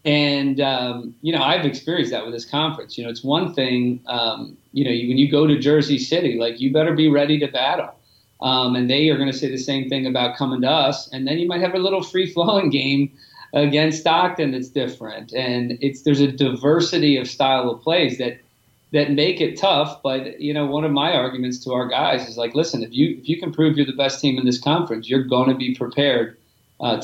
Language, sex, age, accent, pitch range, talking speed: English, male, 40-59, American, 125-145 Hz, 235 wpm